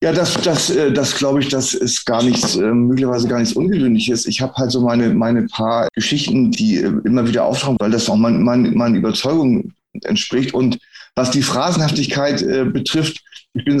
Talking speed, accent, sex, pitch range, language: 185 wpm, German, male, 120-145 Hz, German